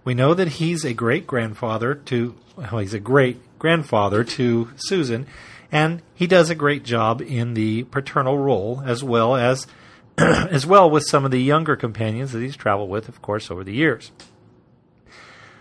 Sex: male